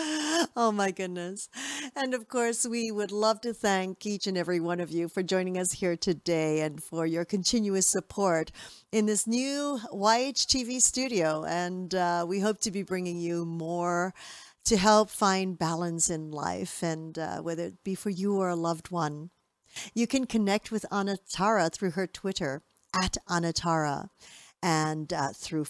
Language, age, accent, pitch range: English, 50-69, American, 170-225 Hz